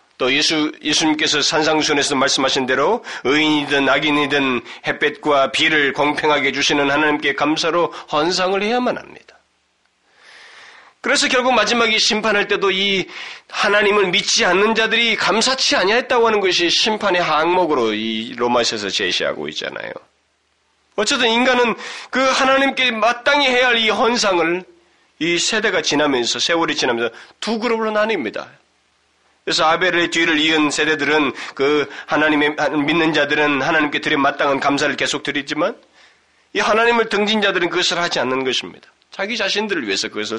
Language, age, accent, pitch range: Korean, 30-49, native, 140-200 Hz